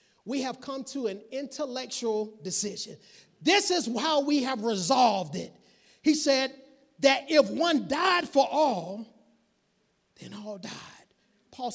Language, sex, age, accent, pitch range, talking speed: English, male, 30-49, American, 205-300 Hz, 135 wpm